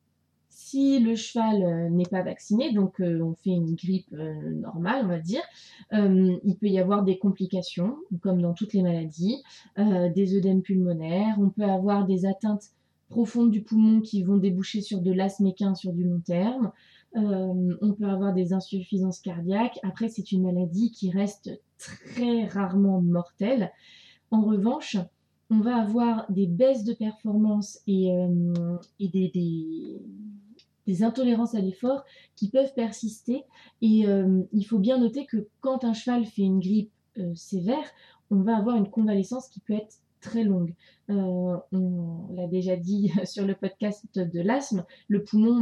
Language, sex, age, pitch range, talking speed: French, female, 20-39, 185-220 Hz, 165 wpm